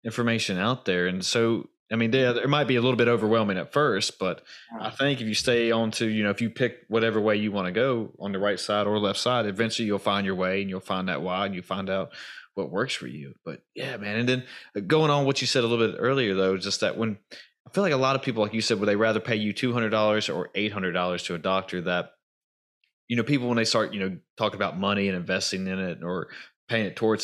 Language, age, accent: English, 20-39, American